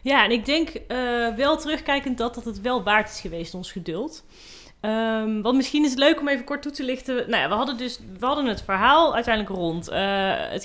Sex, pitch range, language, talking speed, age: female, 205-255 Hz, Dutch, 230 wpm, 30-49